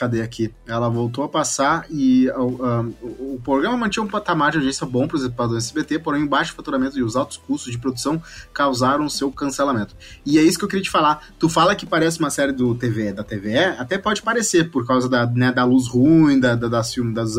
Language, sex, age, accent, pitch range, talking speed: Portuguese, male, 20-39, Brazilian, 120-155 Hz, 235 wpm